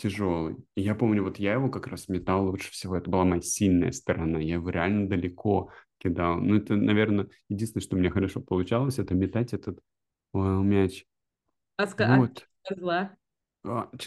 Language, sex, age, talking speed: Russian, male, 30-49, 140 wpm